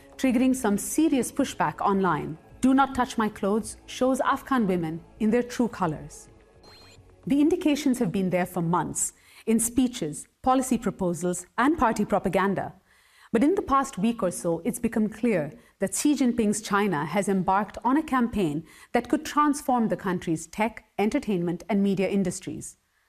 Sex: female